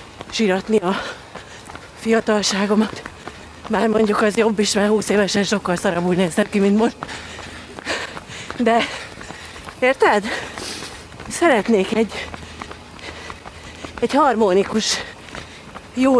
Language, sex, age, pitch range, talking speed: Hungarian, female, 40-59, 180-230 Hz, 90 wpm